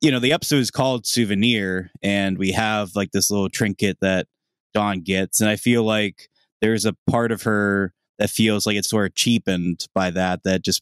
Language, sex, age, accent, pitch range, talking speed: English, male, 20-39, American, 95-115 Hz, 205 wpm